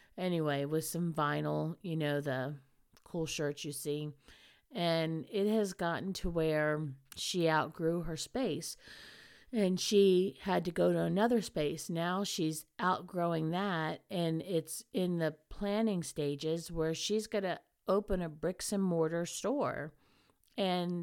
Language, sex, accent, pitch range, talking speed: English, female, American, 150-185 Hz, 145 wpm